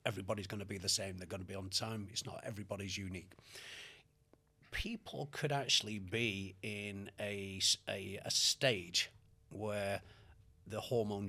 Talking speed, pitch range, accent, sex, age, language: 145 wpm, 100-125 Hz, British, male, 40-59, English